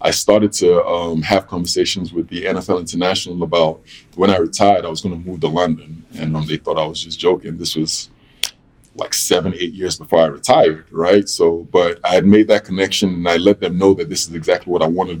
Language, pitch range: English, 85-100 Hz